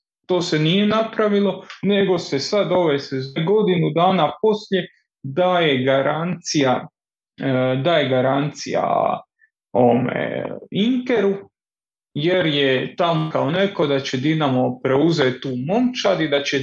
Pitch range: 135-195 Hz